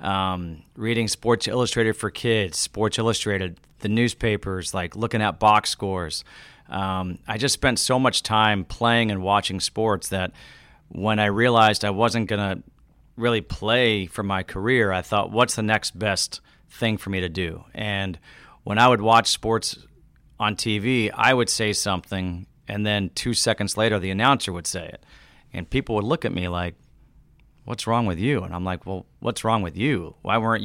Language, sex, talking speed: English, male, 180 wpm